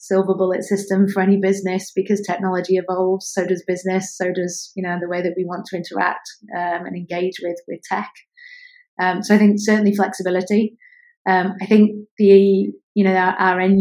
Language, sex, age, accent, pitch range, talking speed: English, female, 30-49, British, 175-195 Hz, 190 wpm